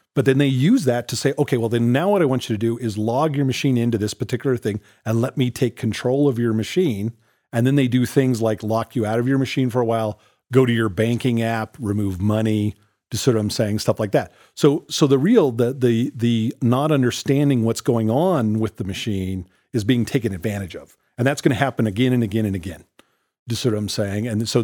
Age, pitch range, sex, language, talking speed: 40-59, 110-135 Hz, male, English, 240 wpm